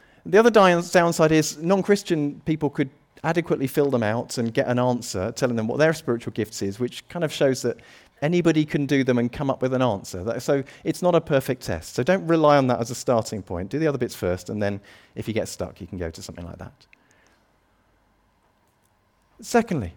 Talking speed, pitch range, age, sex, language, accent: 215 wpm, 110-160 Hz, 40-59, male, English, British